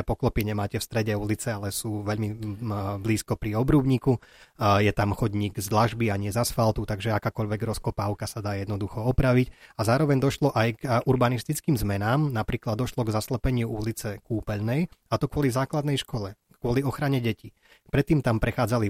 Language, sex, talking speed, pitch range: Slovak, male, 160 wpm, 110-130 Hz